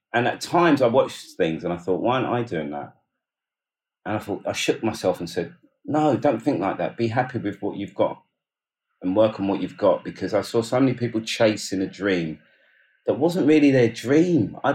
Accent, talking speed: British, 220 wpm